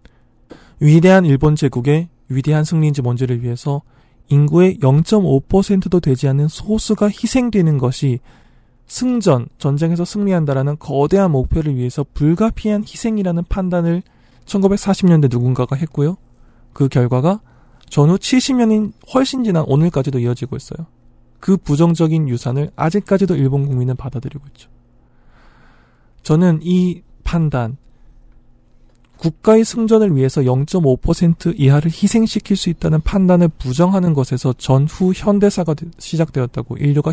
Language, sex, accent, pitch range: Korean, male, native, 130-190 Hz